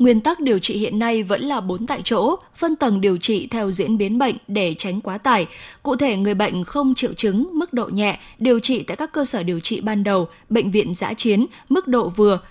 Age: 10-29